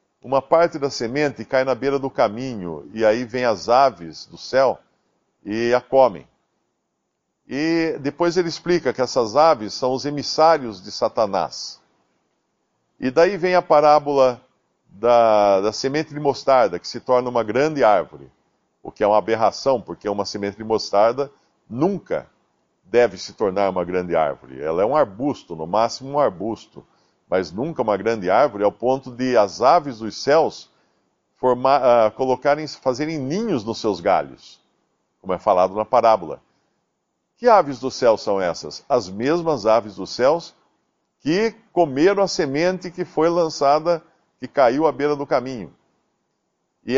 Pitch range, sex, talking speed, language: 110-150 Hz, male, 155 wpm, Portuguese